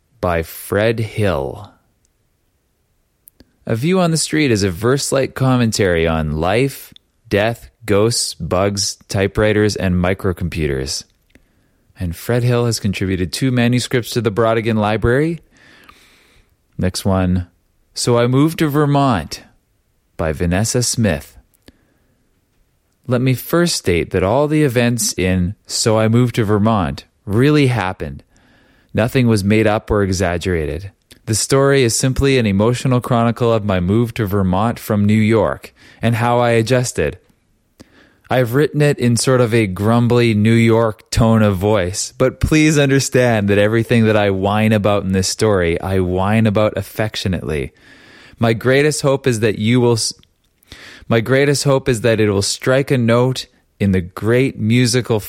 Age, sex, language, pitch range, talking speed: 30-49, male, English, 100-125 Hz, 145 wpm